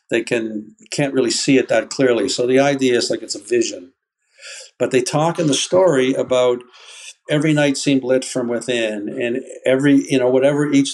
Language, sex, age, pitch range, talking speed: English, male, 50-69, 125-150 Hz, 190 wpm